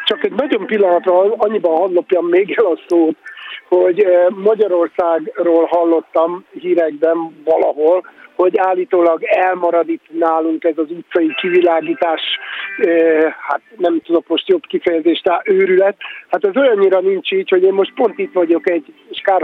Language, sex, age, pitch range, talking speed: Hungarian, male, 50-69, 175-215 Hz, 135 wpm